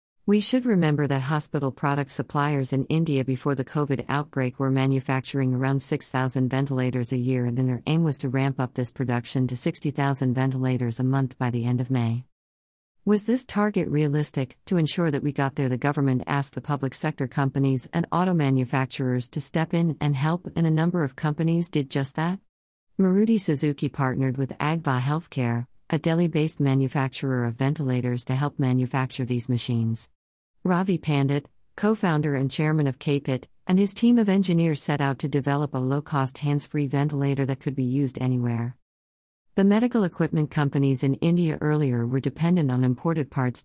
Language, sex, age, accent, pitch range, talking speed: English, female, 50-69, American, 130-155 Hz, 175 wpm